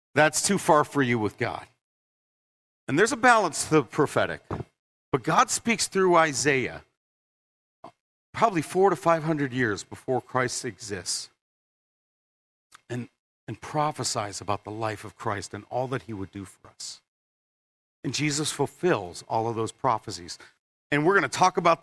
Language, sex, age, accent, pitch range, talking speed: English, male, 40-59, American, 115-160 Hz, 155 wpm